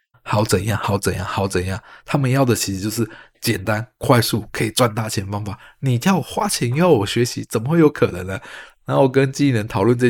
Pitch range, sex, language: 110-140 Hz, male, Chinese